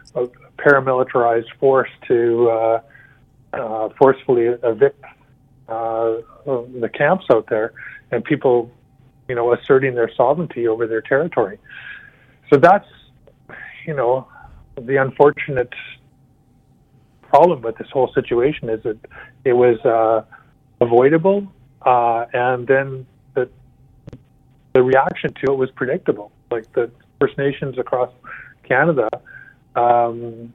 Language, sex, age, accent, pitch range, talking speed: English, male, 40-59, American, 120-140 Hz, 110 wpm